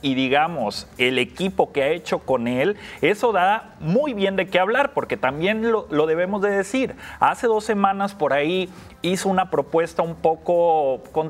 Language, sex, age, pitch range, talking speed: English, male, 30-49, 160-225 Hz, 180 wpm